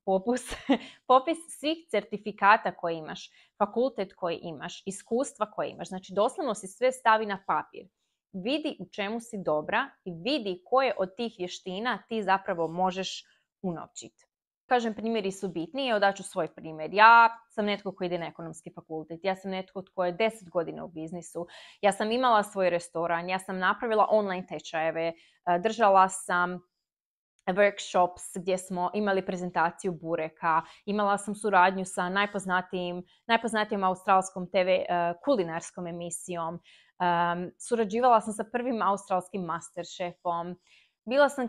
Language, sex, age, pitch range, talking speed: Croatian, female, 20-39, 175-225 Hz, 135 wpm